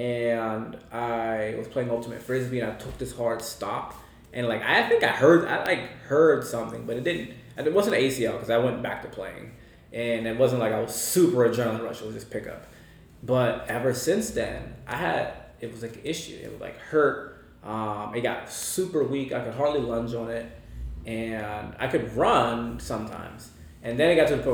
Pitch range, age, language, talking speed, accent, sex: 110-130 Hz, 20-39, English, 210 wpm, American, male